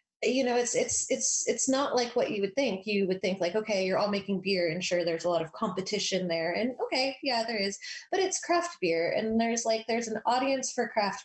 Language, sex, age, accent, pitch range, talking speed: English, female, 20-39, American, 175-235 Hz, 245 wpm